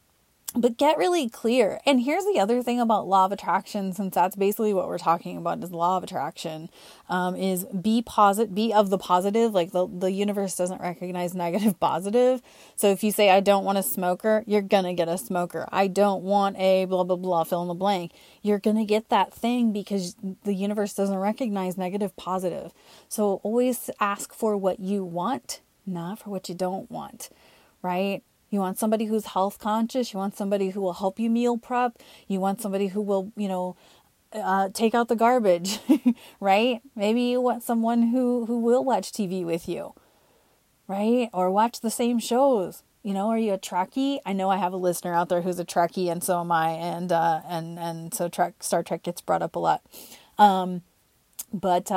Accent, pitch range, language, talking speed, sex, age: American, 180-220 Hz, English, 200 wpm, female, 30-49